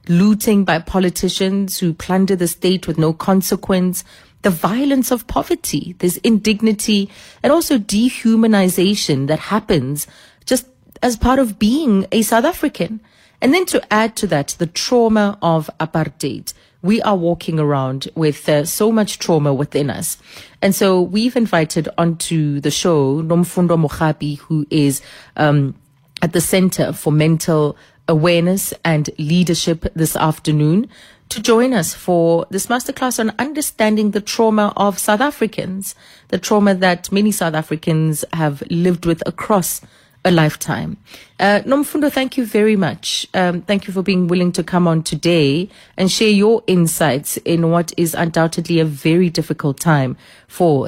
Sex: female